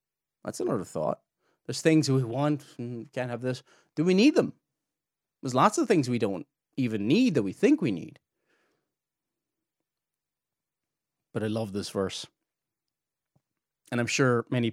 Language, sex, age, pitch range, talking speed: English, male, 30-49, 125-200 Hz, 150 wpm